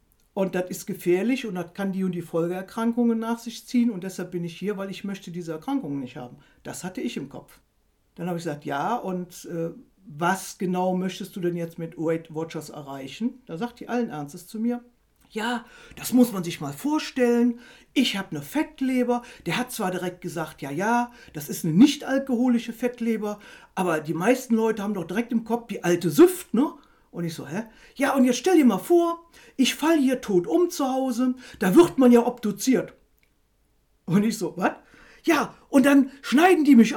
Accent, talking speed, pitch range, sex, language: German, 205 wpm, 180-255 Hz, female, German